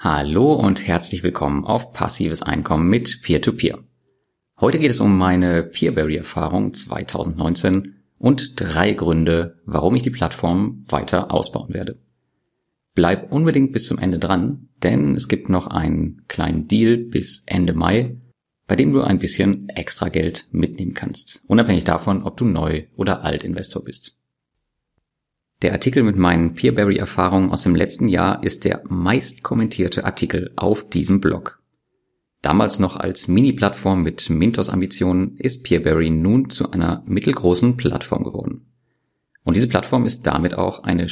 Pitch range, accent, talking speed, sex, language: 85-110 Hz, German, 145 wpm, male, German